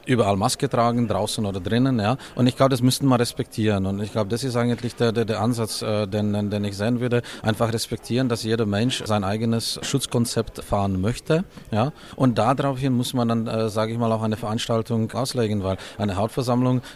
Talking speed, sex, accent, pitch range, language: 200 wpm, male, Austrian, 110-125 Hz, German